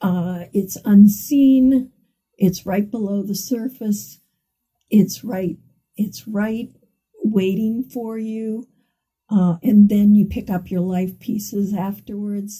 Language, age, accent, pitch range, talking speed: English, 50-69, American, 180-210 Hz, 120 wpm